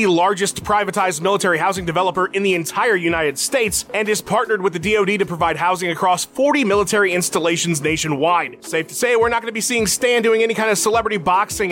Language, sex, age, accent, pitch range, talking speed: English, male, 30-49, American, 175-230 Hz, 205 wpm